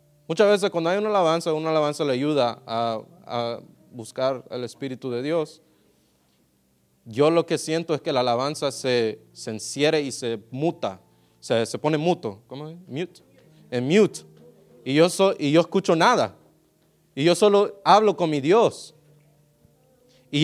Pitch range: 140-185 Hz